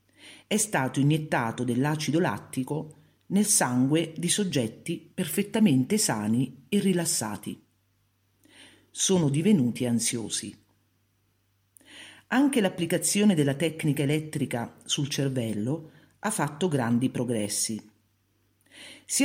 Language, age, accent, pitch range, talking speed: Italian, 50-69, native, 115-180 Hz, 85 wpm